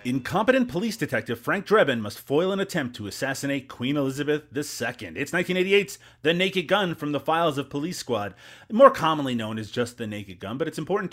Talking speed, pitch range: 195 wpm, 120-160 Hz